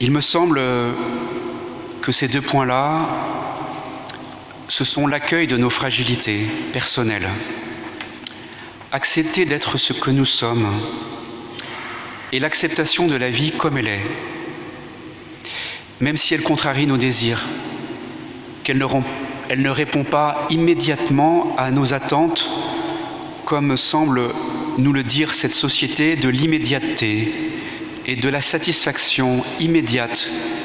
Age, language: 40-59, French